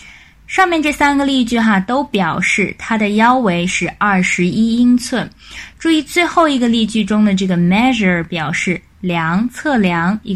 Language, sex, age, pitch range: Chinese, female, 20-39, 180-245 Hz